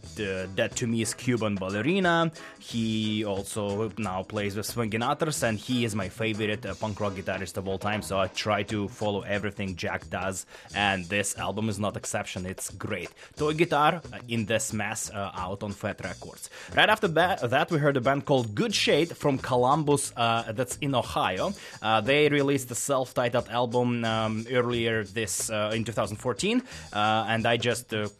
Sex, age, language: male, 20-39, English